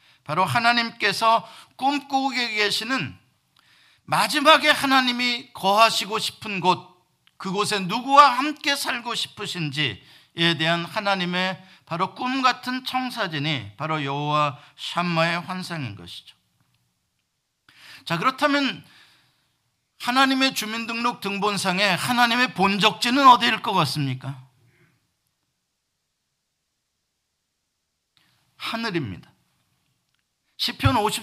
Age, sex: 50-69, male